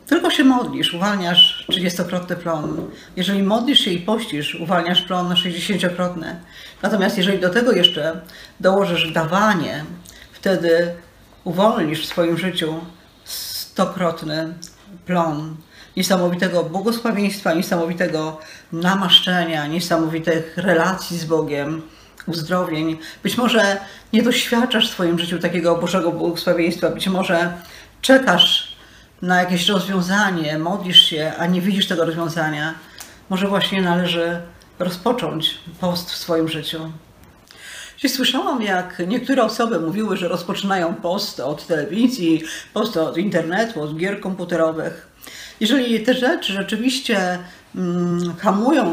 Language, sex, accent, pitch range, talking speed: Polish, female, native, 170-205 Hz, 110 wpm